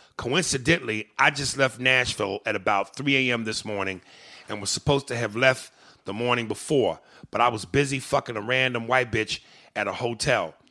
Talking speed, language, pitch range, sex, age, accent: 180 wpm, English, 120-155 Hz, male, 30-49, American